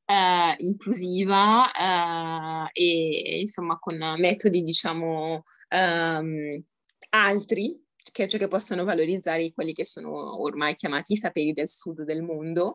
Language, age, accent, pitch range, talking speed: Italian, 20-39, native, 170-220 Hz, 120 wpm